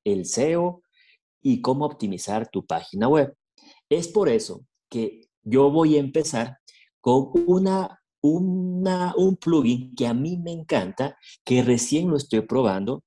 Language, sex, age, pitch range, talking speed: Spanish, male, 40-59, 120-165 Hz, 135 wpm